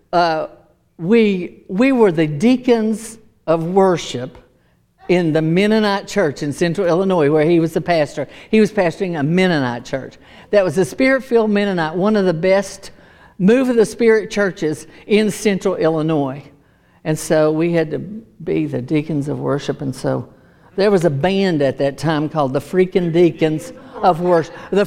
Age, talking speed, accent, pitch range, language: 60-79, 160 wpm, American, 165-225 Hz, English